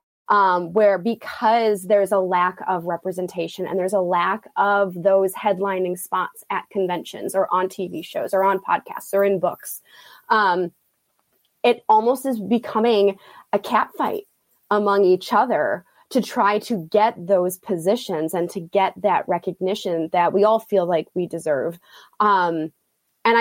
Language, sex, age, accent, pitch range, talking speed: English, female, 20-39, American, 180-215 Hz, 150 wpm